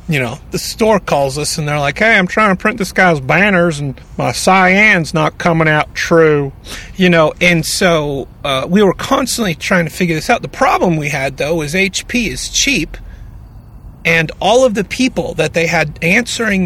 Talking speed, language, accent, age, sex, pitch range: 200 wpm, English, American, 40-59, male, 135-185 Hz